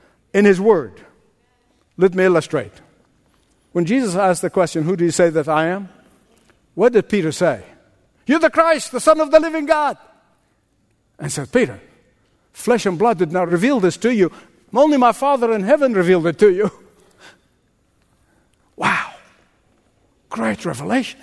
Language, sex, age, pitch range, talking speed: English, male, 60-79, 170-265 Hz, 155 wpm